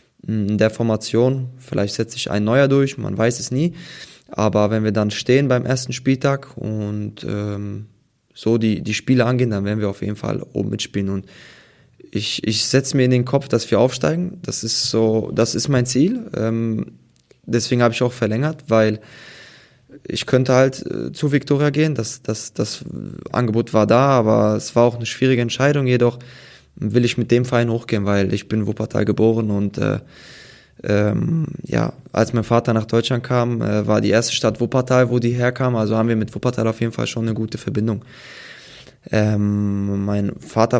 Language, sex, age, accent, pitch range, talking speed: German, male, 20-39, German, 105-125 Hz, 185 wpm